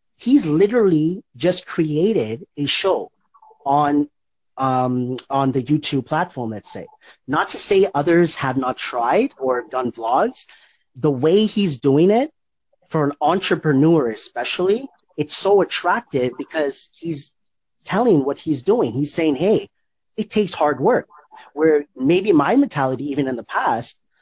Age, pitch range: 30-49, 135-190 Hz